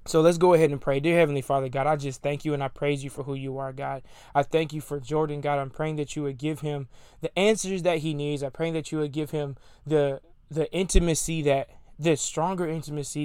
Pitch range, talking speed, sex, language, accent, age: 140-155 Hz, 250 wpm, male, English, American, 20-39